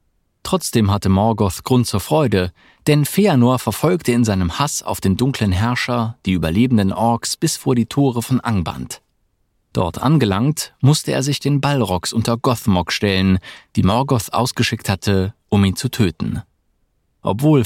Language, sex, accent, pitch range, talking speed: German, male, German, 95-135 Hz, 150 wpm